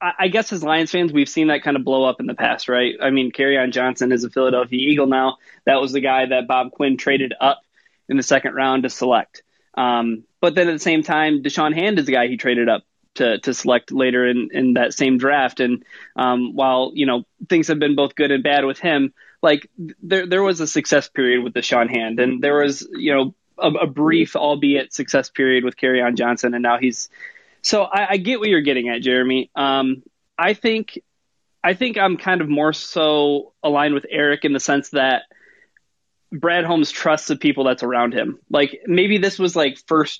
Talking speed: 220 wpm